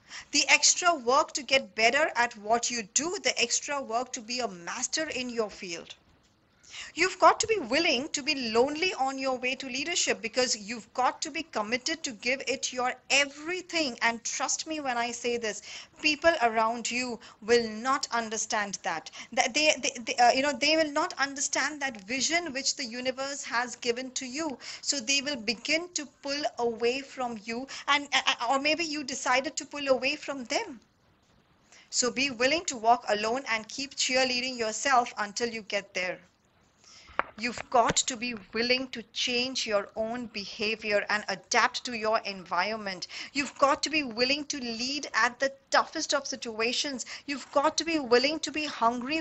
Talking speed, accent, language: 175 wpm, Indian, English